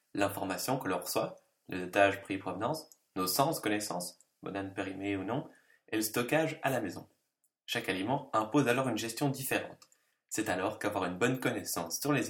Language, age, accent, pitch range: French, 20-39, French, 100-140 Hz